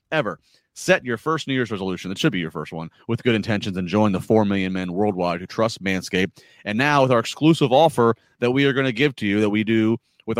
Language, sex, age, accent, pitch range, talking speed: English, male, 30-49, American, 110-135 Hz, 255 wpm